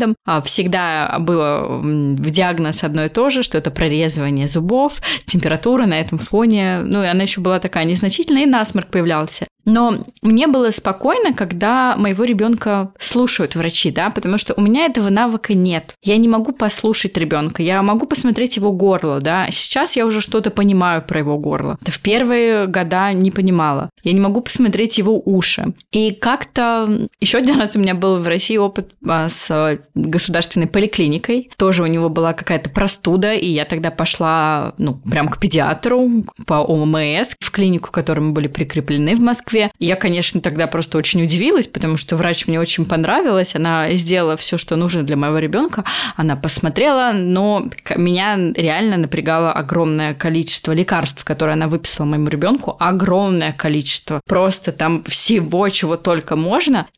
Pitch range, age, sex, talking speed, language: 165-215 Hz, 20-39, female, 165 wpm, Russian